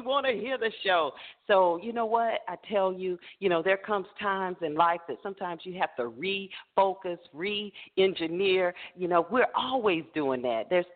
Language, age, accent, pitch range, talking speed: English, 40-59, American, 155-225 Hz, 180 wpm